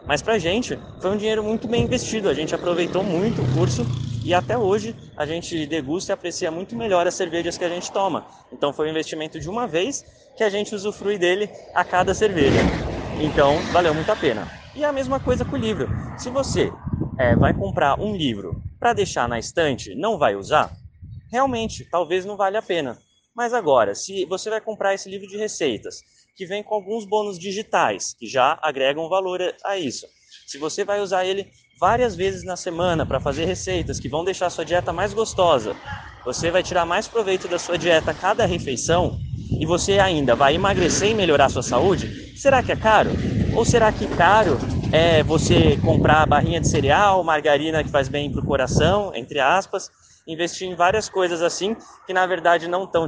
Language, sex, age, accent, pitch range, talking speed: Portuguese, male, 20-39, Brazilian, 155-200 Hz, 200 wpm